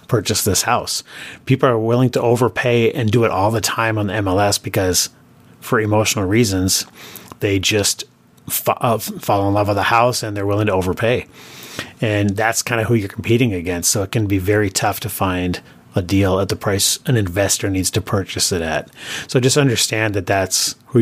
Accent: American